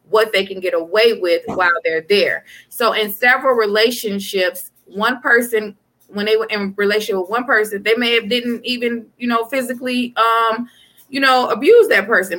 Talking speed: 180 wpm